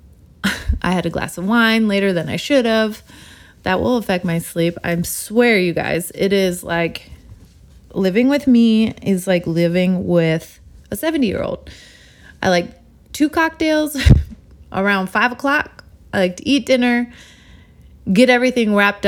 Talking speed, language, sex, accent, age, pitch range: 150 wpm, English, female, American, 20-39, 180-245 Hz